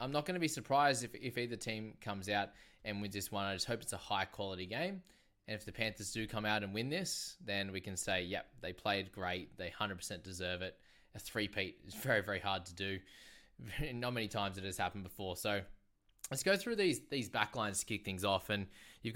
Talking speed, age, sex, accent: 230 wpm, 20-39, male, Australian